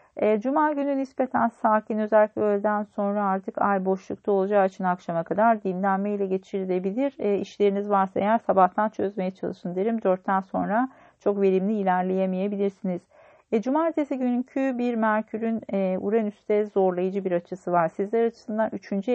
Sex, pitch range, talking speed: female, 185-225 Hz, 140 wpm